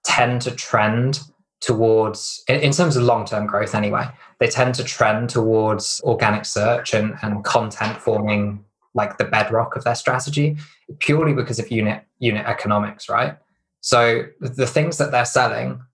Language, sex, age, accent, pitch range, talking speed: English, male, 20-39, British, 110-125 Hz, 150 wpm